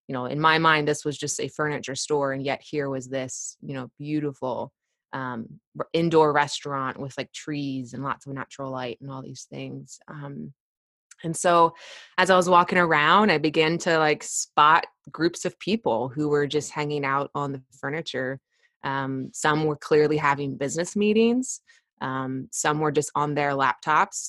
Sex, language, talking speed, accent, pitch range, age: female, English, 180 wpm, American, 140-165 Hz, 20-39